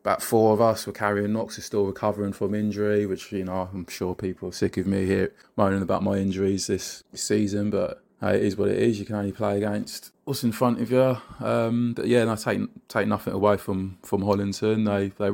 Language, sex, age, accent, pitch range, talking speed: English, male, 20-39, British, 95-105 Hz, 240 wpm